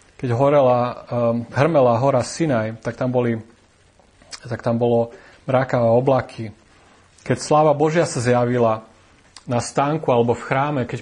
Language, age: Slovak, 30-49